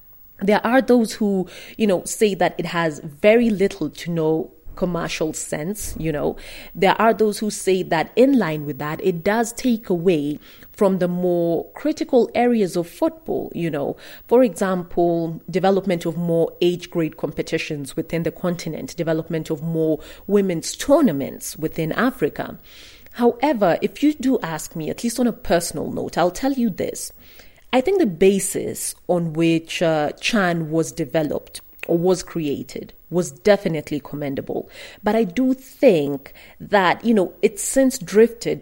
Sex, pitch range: female, 170-235 Hz